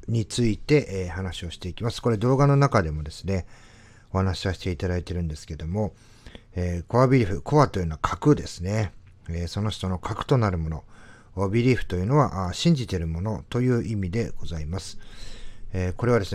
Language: Japanese